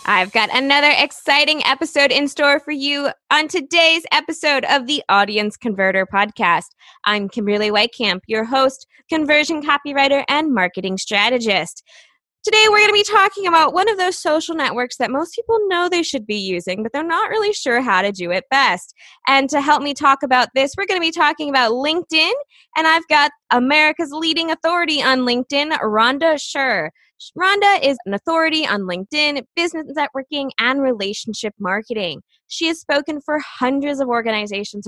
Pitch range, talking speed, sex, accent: 225-320 Hz, 170 wpm, female, American